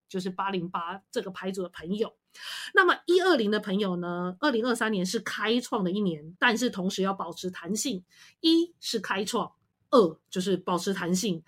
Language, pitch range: Chinese, 190-270 Hz